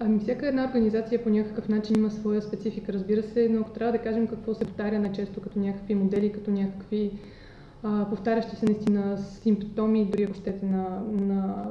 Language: Bulgarian